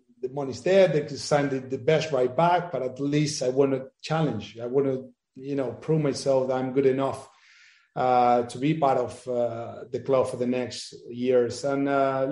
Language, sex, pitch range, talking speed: English, male, 125-145 Hz, 210 wpm